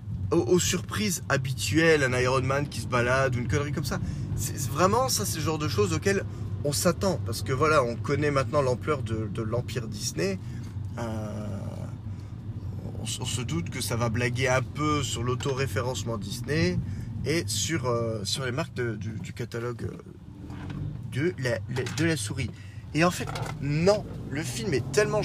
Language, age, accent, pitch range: French, 30-49, French, 110-140 Hz